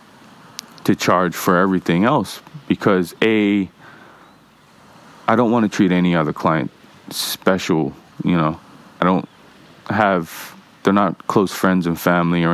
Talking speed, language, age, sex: 135 wpm, English, 20-39, male